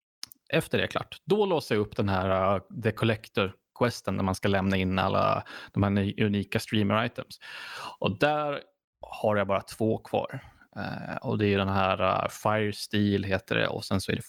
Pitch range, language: 100-120 Hz, Swedish